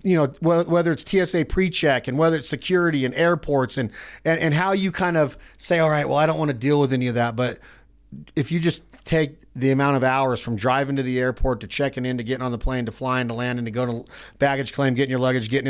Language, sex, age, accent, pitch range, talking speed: English, male, 40-59, American, 130-170 Hz, 255 wpm